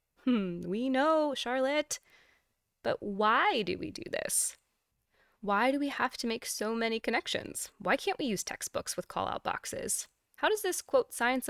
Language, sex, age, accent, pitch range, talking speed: English, female, 20-39, American, 180-275 Hz, 165 wpm